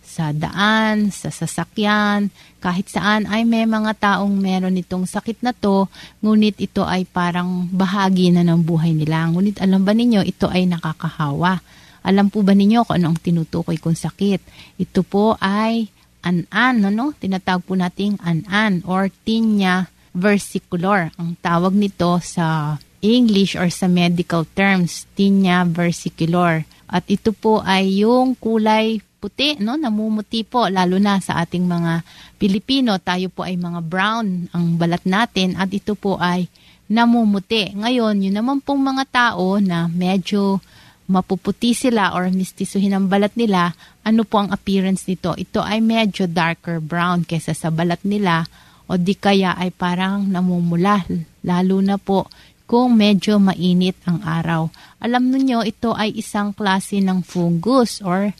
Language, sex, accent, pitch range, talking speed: Filipino, female, native, 175-210 Hz, 150 wpm